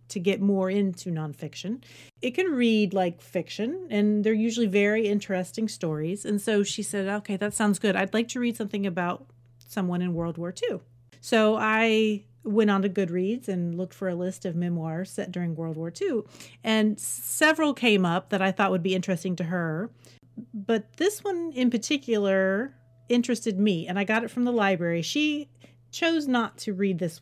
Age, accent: 40-59, American